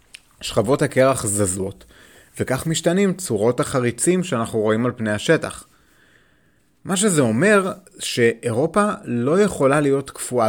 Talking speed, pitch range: 115 wpm, 110-155 Hz